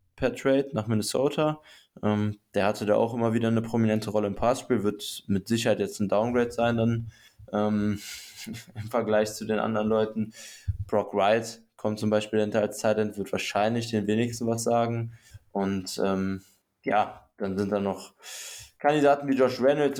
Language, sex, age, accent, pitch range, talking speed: German, male, 20-39, German, 105-115 Hz, 170 wpm